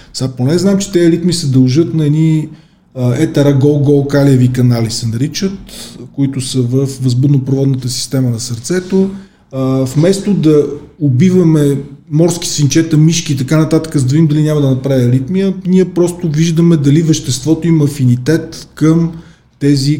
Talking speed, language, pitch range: 145 wpm, Bulgarian, 135-165 Hz